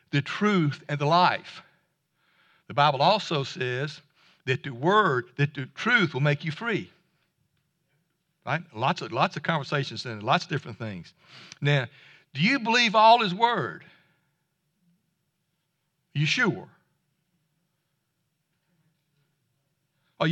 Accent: American